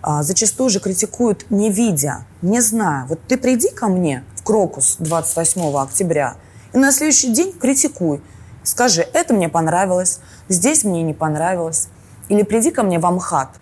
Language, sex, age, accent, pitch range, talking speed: Russian, female, 20-39, native, 145-195 Hz, 155 wpm